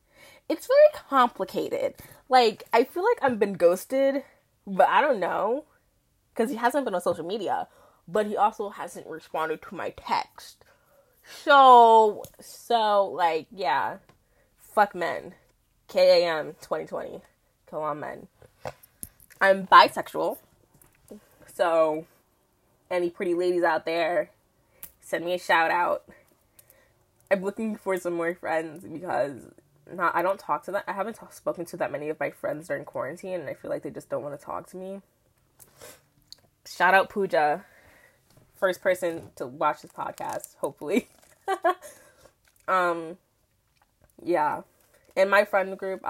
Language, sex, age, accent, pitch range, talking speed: English, female, 10-29, American, 160-225 Hz, 135 wpm